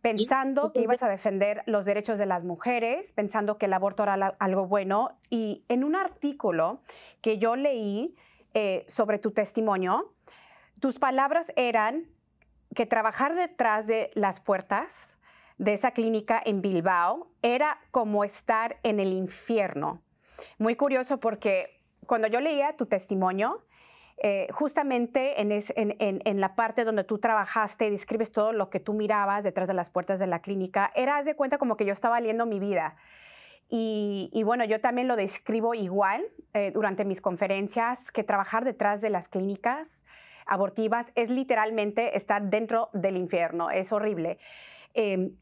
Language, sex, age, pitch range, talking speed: Spanish, female, 30-49, 200-240 Hz, 155 wpm